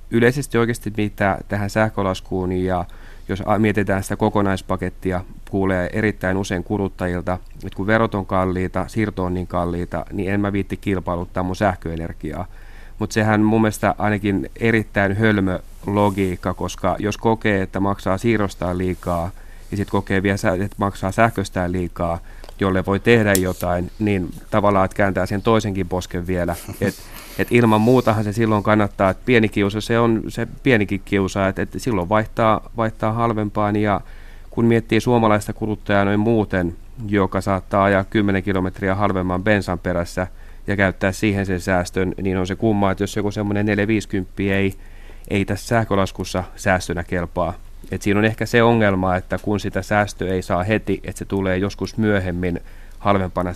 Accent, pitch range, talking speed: native, 90-105 Hz, 155 wpm